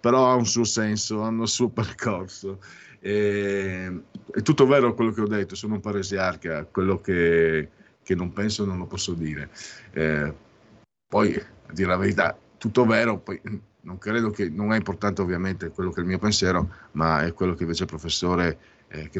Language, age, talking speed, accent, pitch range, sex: Italian, 50-69, 175 wpm, native, 85-105 Hz, male